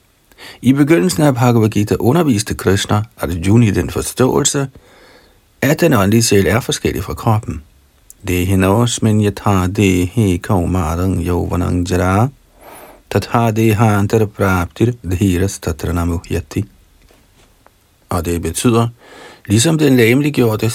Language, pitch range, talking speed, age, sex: Danish, 90-115 Hz, 135 wpm, 50-69, male